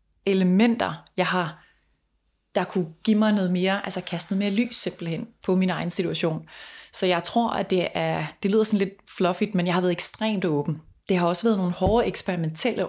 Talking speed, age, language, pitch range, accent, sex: 200 wpm, 20-39, Danish, 175-210 Hz, native, female